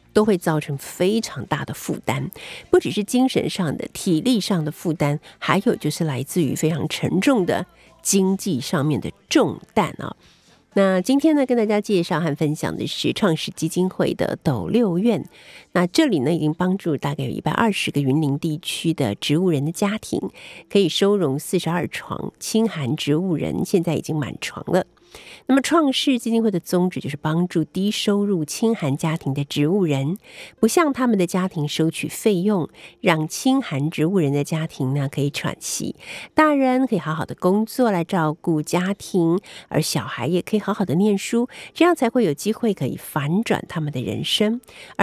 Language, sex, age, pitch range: Chinese, female, 50-69, 150-210 Hz